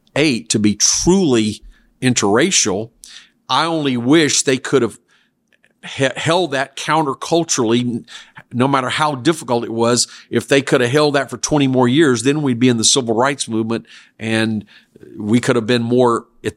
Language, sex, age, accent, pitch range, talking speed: English, male, 50-69, American, 110-130 Hz, 165 wpm